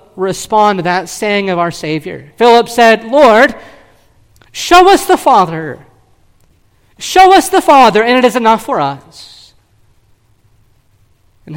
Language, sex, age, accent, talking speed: English, male, 40-59, American, 130 wpm